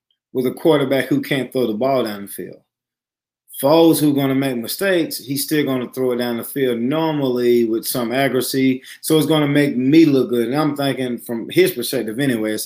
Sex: male